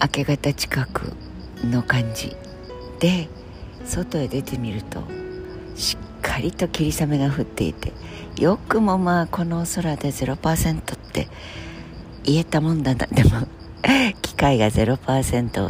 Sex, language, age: female, Japanese, 50-69